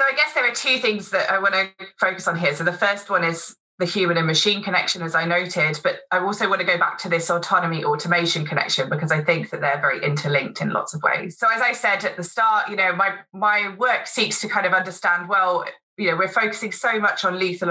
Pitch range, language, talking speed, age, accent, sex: 165-215 Hz, English, 260 wpm, 20-39, British, female